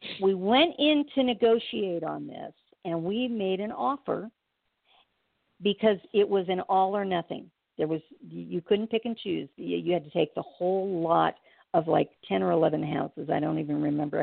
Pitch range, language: 170-225 Hz, English